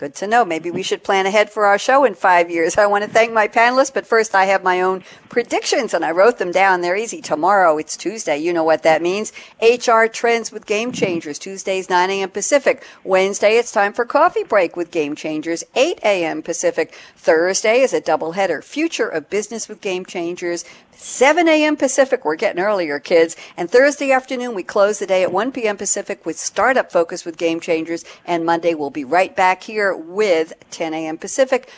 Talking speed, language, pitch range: 205 wpm, English, 175-235 Hz